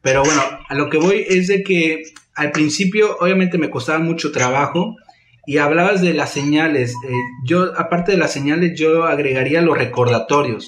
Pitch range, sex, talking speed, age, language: 130-180 Hz, male, 175 wpm, 30-49, Spanish